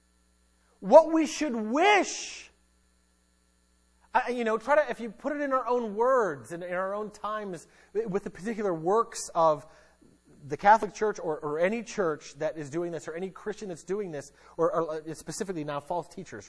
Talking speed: 175 wpm